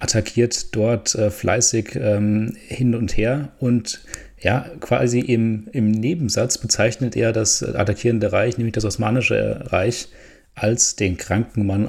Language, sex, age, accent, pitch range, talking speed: German, male, 30-49, German, 105-120 Hz, 135 wpm